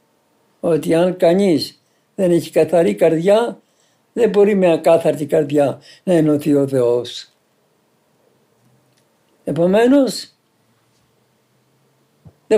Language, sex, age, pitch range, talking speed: Greek, male, 60-79, 145-190 Hz, 85 wpm